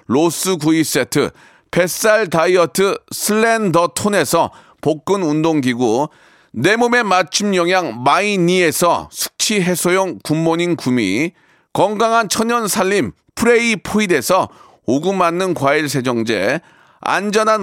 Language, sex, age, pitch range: Korean, male, 40-59, 160-215 Hz